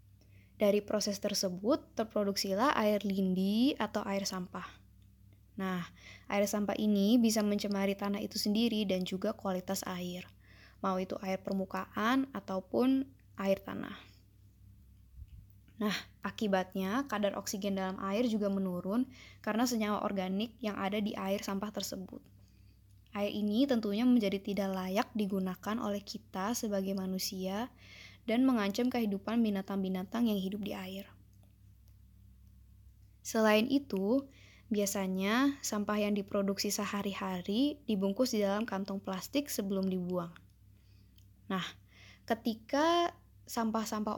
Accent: native